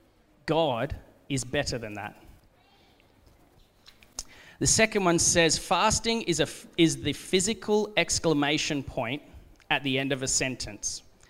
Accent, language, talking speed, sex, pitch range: Australian, English, 115 wpm, male, 125-165 Hz